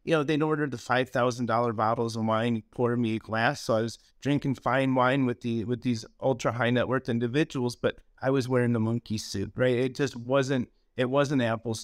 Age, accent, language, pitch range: 30-49, American, English, 110-125 Hz